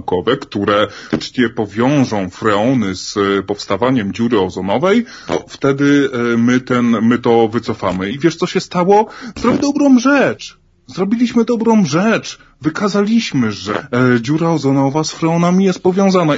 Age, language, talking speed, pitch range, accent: 20-39, Polish, 120 wpm, 130-190 Hz, native